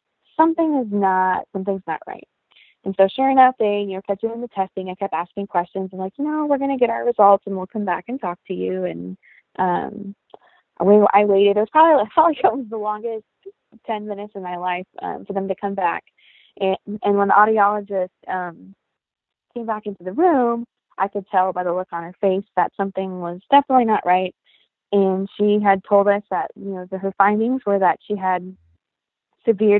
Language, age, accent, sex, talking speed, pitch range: English, 20-39, American, female, 205 wpm, 185-220 Hz